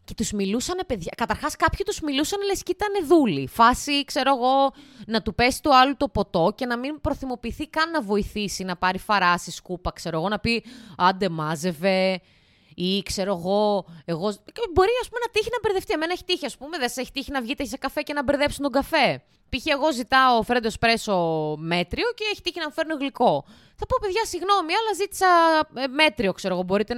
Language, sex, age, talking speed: Greek, female, 20-39, 200 wpm